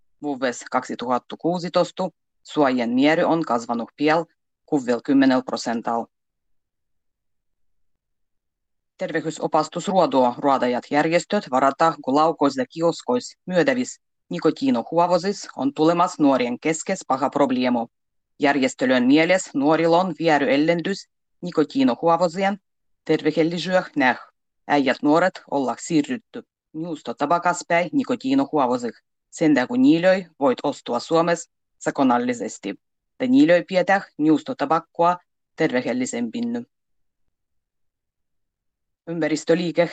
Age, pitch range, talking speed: 30-49, 135-185 Hz, 80 wpm